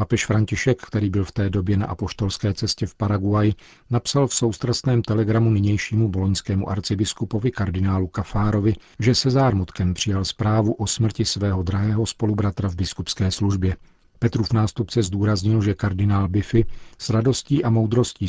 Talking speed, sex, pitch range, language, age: 150 wpm, male, 95-115 Hz, Czech, 40-59